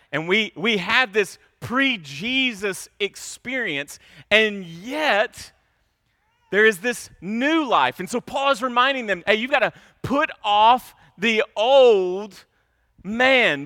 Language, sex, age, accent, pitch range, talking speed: English, male, 30-49, American, 155-230 Hz, 125 wpm